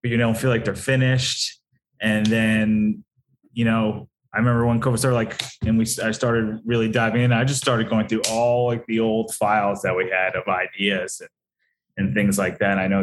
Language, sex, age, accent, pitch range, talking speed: English, male, 20-39, American, 105-120 Hz, 215 wpm